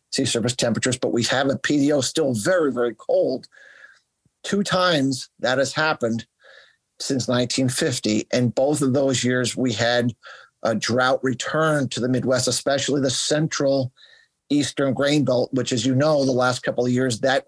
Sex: male